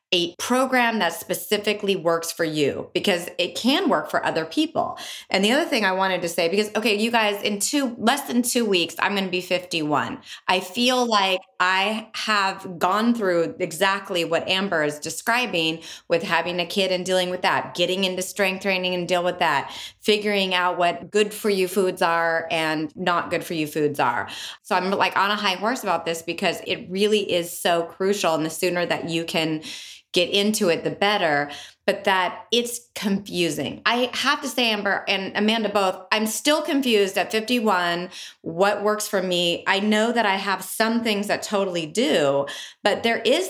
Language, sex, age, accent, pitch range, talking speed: English, female, 20-39, American, 175-220 Hz, 190 wpm